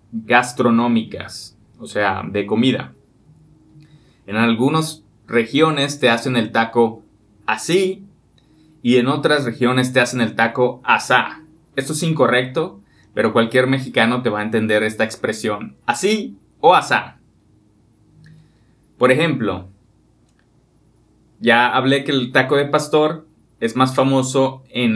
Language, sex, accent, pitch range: English, male, Mexican, 115-140 Hz